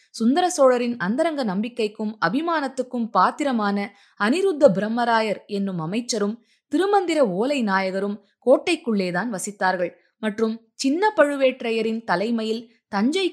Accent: native